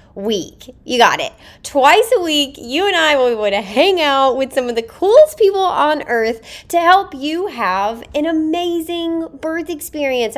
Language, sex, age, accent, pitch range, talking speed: English, female, 20-39, American, 220-305 Hz, 185 wpm